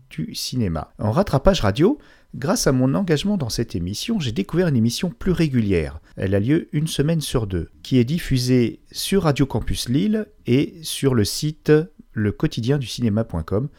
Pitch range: 100-155 Hz